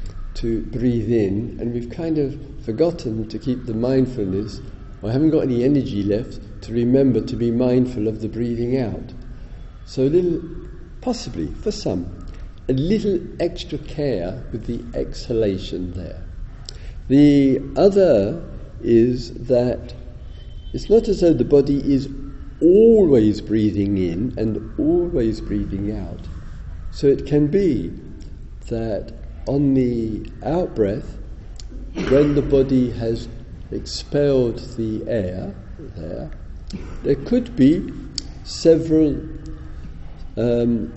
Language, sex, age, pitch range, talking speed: English, male, 50-69, 100-145 Hz, 120 wpm